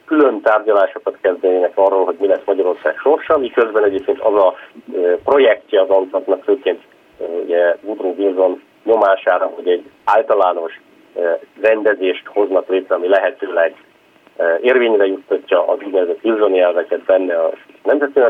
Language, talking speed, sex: Hungarian, 120 wpm, male